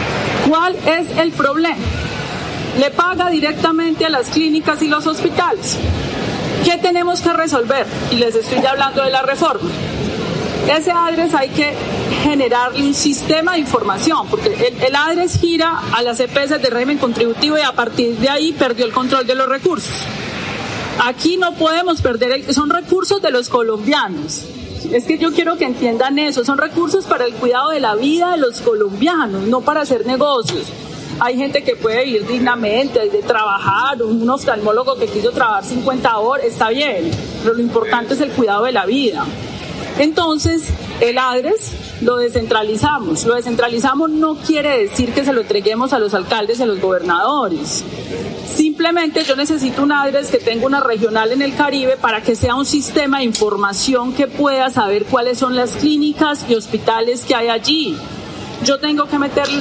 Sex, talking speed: female, 170 wpm